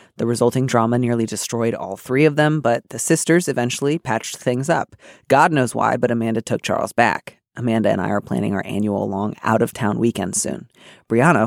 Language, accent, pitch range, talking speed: English, American, 115-155 Hz, 190 wpm